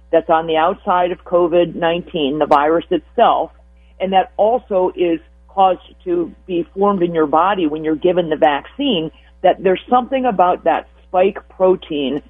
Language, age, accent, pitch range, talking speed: English, 50-69, American, 155-190 Hz, 155 wpm